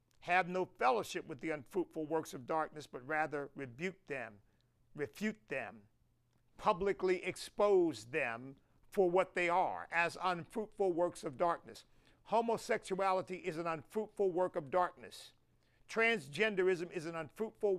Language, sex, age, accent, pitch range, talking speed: English, male, 50-69, American, 130-185 Hz, 130 wpm